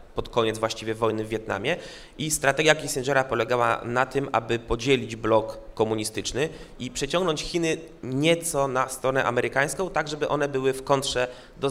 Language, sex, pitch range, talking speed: Polish, male, 115-135 Hz, 155 wpm